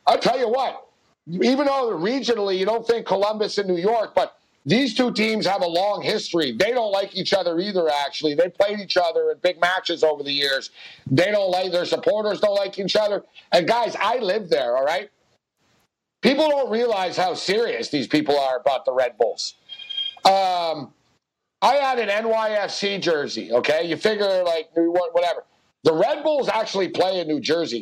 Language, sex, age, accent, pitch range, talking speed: English, male, 60-79, American, 170-230 Hz, 185 wpm